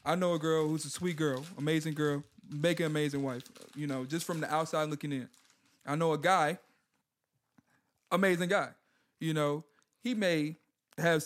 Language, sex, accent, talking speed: English, male, American, 175 wpm